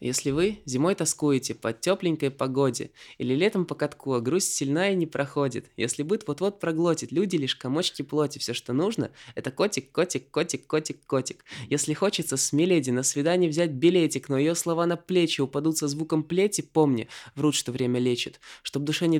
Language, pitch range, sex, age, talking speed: Russian, 140-185 Hz, male, 20-39, 170 wpm